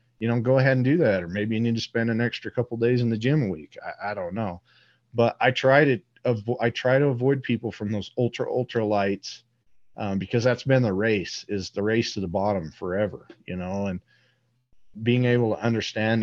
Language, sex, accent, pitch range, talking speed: English, male, American, 100-125 Hz, 230 wpm